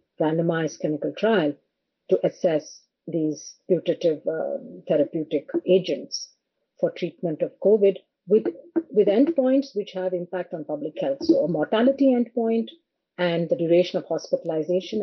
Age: 50-69